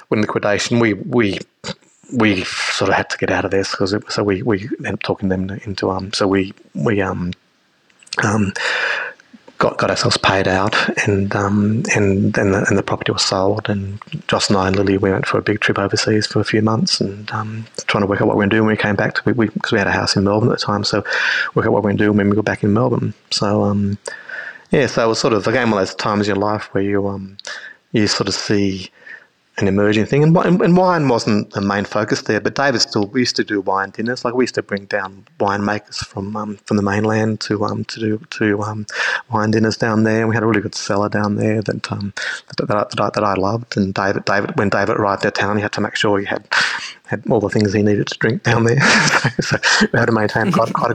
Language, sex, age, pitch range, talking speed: English, male, 30-49, 100-110 Hz, 260 wpm